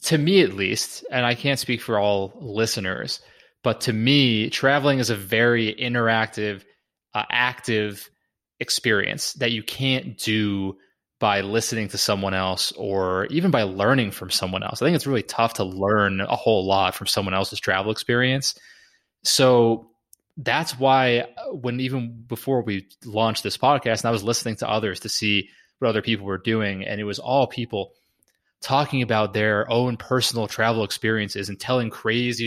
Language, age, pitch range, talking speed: English, 20-39, 100-120 Hz, 165 wpm